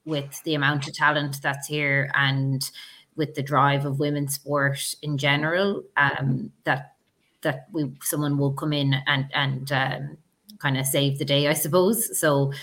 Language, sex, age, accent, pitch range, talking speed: English, female, 20-39, Irish, 140-150 Hz, 165 wpm